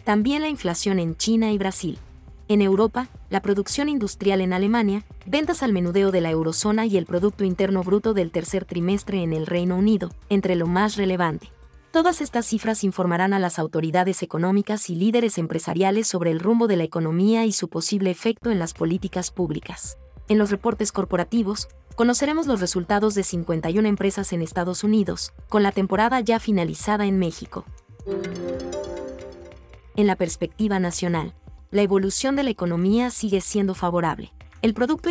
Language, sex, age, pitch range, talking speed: Spanish, female, 30-49, 175-215 Hz, 160 wpm